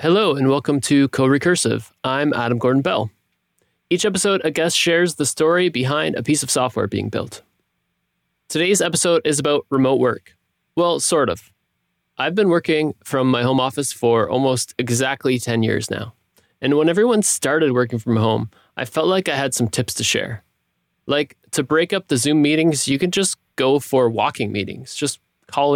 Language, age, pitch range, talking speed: English, 20-39, 125-160 Hz, 175 wpm